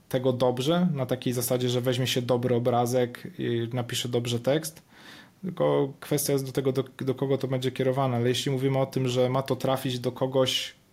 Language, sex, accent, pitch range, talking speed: Polish, male, native, 120-135 Hz, 190 wpm